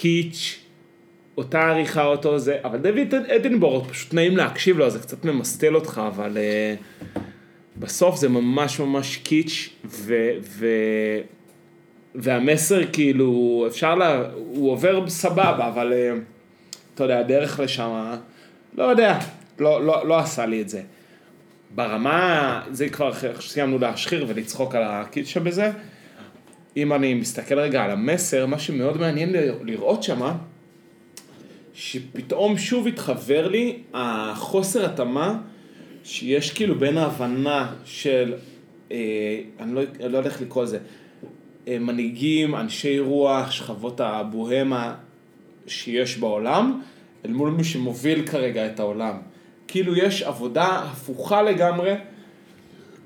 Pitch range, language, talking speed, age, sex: 120-170 Hz, Hebrew, 120 wpm, 30-49, male